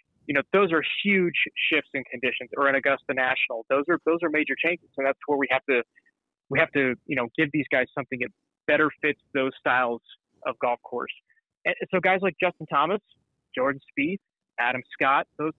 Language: English